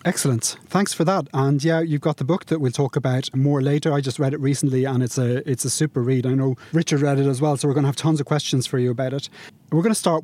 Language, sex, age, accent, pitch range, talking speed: English, male, 30-49, British, 135-160 Hz, 300 wpm